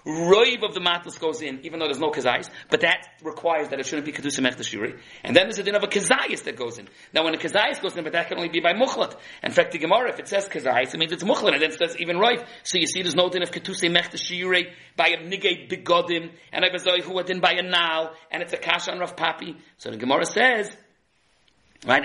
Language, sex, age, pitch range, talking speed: English, male, 40-59, 160-200 Hz, 255 wpm